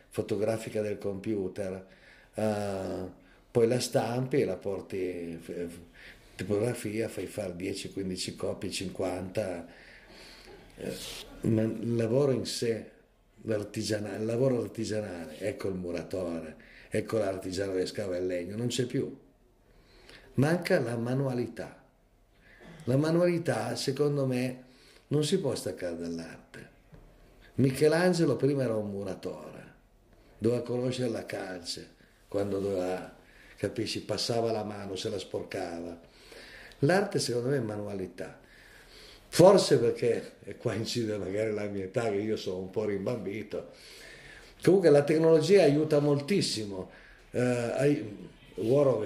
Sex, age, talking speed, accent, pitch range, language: male, 50-69, 120 wpm, native, 95-125 Hz, Italian